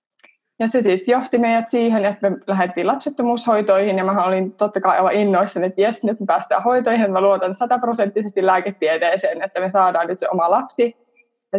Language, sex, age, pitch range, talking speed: Finnish, female, 20-39, 190-225 Hz, 170 wpm